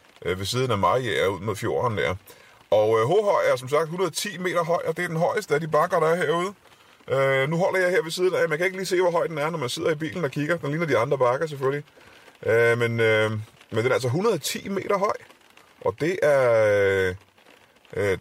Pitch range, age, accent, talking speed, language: 115-175 Hz, 30-49, native, 245 wpm, Danish